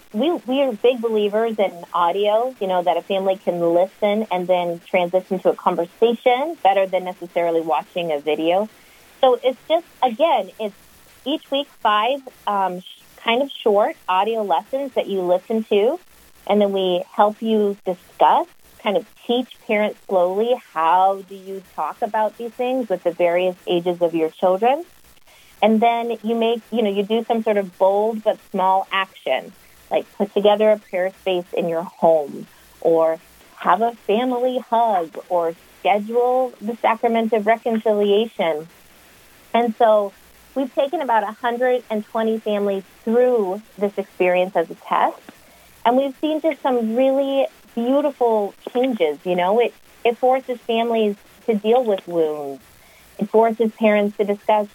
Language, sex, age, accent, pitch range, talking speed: English, female, 30-49, American, 185-235 Hz, 155 wpm